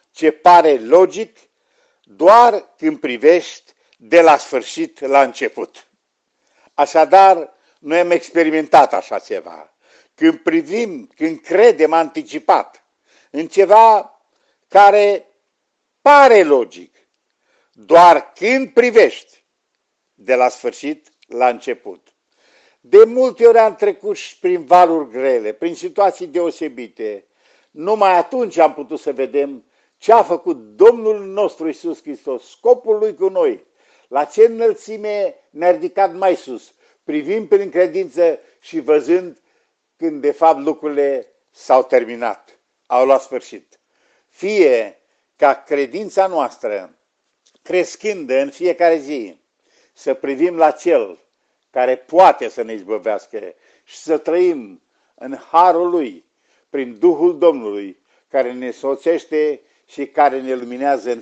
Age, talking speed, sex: 50-69, 115 wpm, male